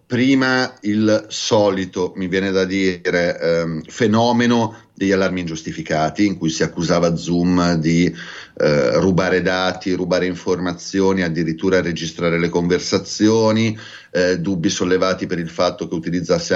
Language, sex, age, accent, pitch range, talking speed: Italian, male, 30-49, native, 85-105 Hz, 125 wpm